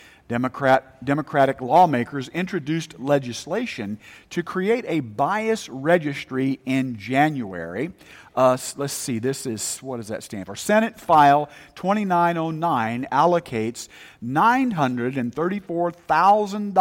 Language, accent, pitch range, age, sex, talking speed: English, American, 130-185 Hz, 50-69, male, 90 wpm